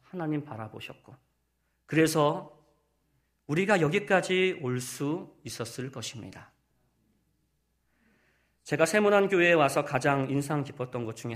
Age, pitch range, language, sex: 40-59, 120-185 Hz, Korean, male